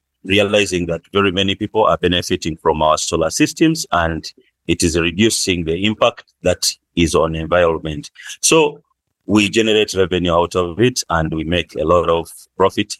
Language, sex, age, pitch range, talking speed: English, male, 30-49, 85-100 Hz, 160 wpm